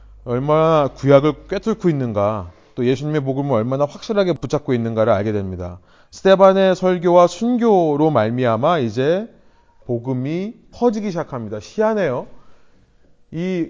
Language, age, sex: Korean, 30-49, male